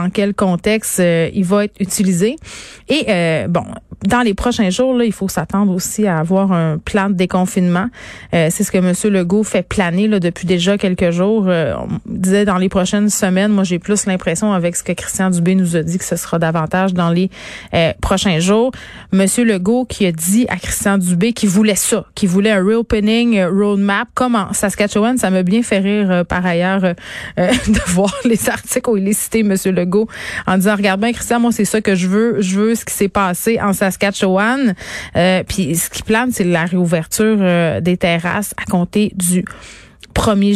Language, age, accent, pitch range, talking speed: French, 30-49, Canadian, 180-215 Hz, 210 wpm